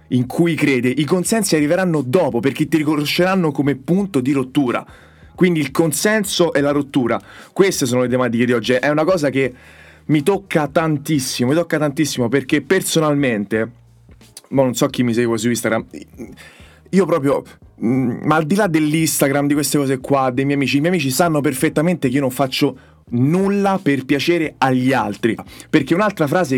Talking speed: 175 wpm